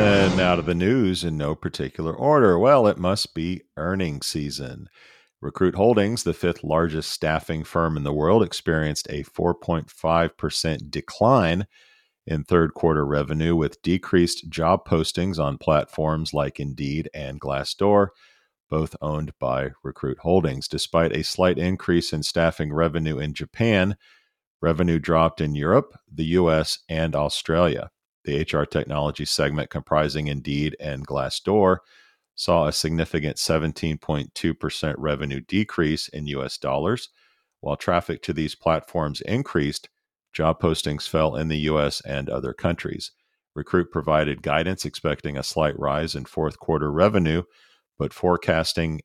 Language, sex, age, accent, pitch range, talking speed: English, male, 40-59, American, 75-85 Hz, 135 wpm